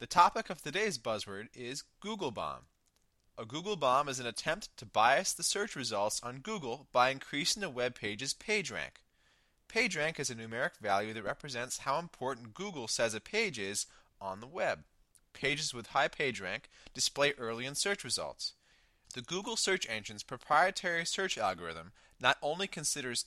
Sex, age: male, 20-39